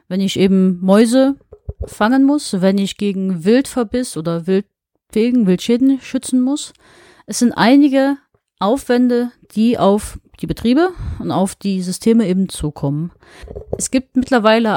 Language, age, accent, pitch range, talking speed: German, 30-49, German, 190-245 Hz, 125 wpm